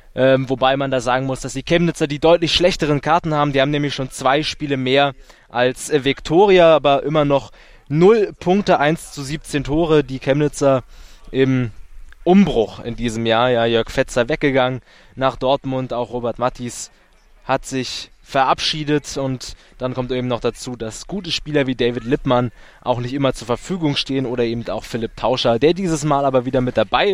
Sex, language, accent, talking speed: male, German, German, 175 wpm